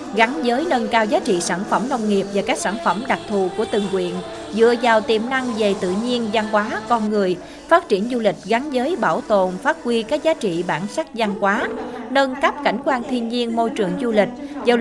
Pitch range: 200-250 Hz